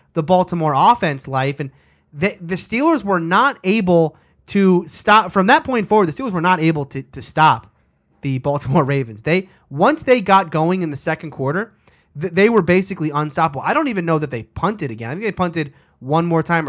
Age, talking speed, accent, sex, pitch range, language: 30-49, 200 wpm, American, male, 145-190 Hz, English